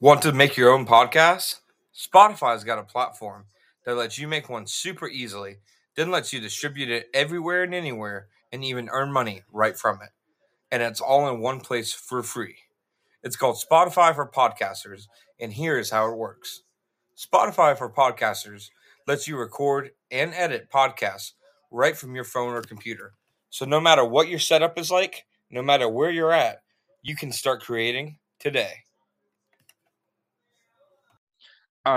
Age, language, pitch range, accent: 30-49, English, 105-140 Hz, American